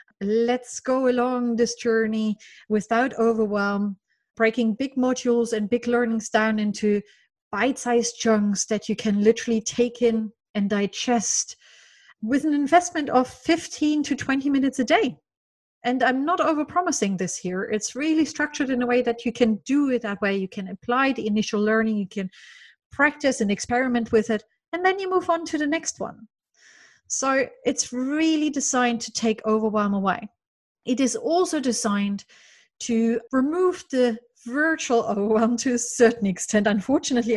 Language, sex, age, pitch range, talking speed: English, female, 30-49, 210-260 Hz, 155 wpm